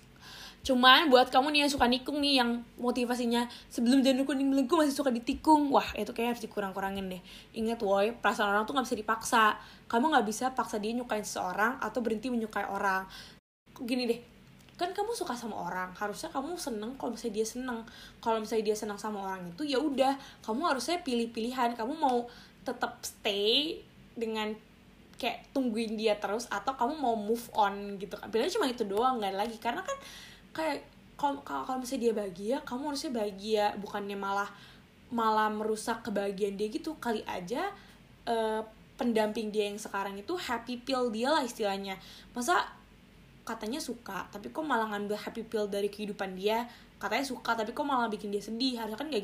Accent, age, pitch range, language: native, 10-29, 210-255 Hz, Indonesian